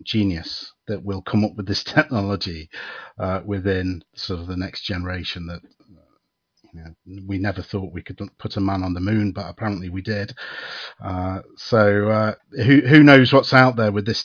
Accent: British